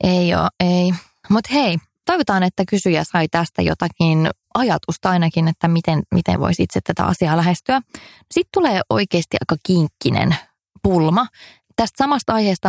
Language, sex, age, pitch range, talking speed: English, female, 20-39, 165-215 Hz, 140 wpm